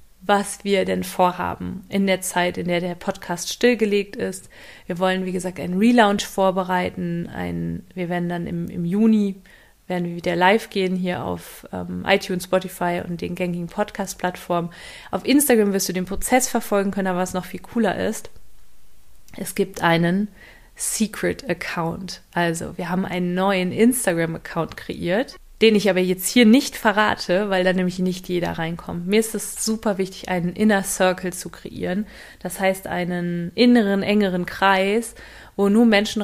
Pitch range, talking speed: 180-205 Hz, 160 wpm